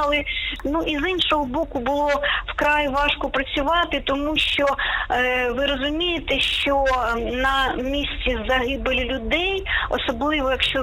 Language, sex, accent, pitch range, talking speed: Ukrainian, female, native, 245-285 Hz, 105 wpm